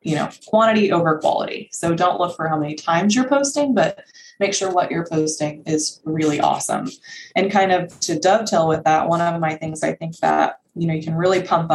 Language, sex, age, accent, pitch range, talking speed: English, female, 20-39, American, 150-185 Hz, 220 wpm